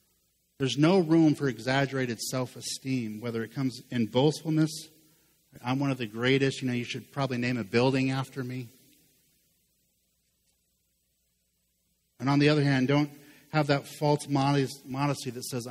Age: 50-69